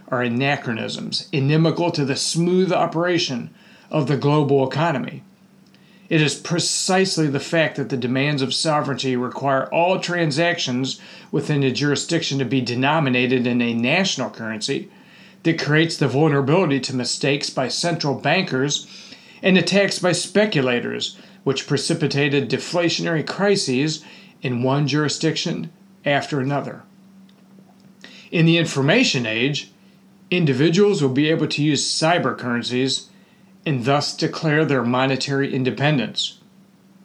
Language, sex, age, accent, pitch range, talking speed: English, male, 40-59, American, 135-180 Hz, 120 wpm